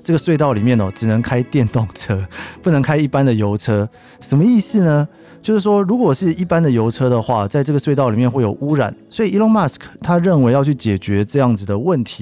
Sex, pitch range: male, 110-150 Hz